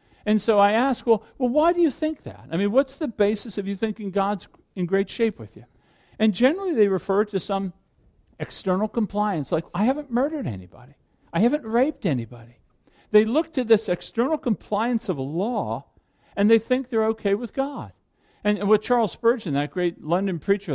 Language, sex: English, male